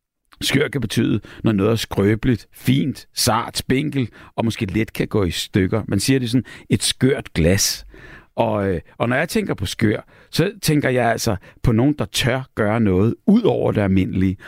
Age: 60-79